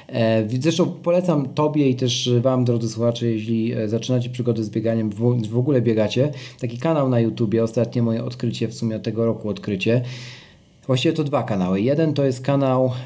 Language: Polish